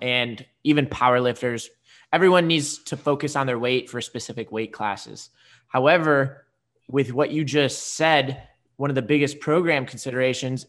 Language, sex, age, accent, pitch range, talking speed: English, male, 20-39, American, 125-150 Hz, 150 wpm